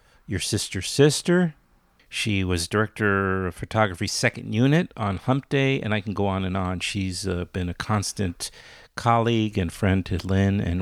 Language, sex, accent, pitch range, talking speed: English, male, American, 90-120 Hz, 170 wpm